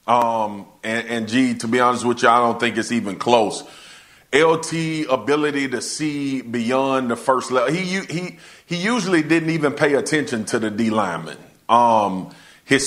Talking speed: 175 wpm